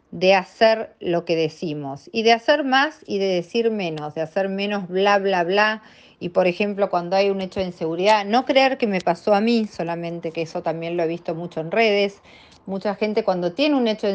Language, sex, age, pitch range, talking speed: Spanish, female, 40-59, 175-230 Hz, 220 wpm